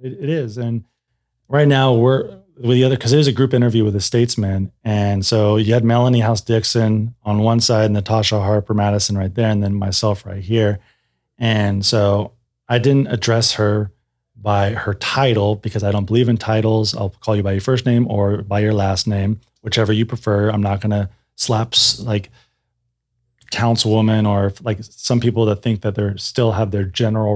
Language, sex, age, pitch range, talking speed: English, male, 30-49, 105-120 Hz, 190 wpm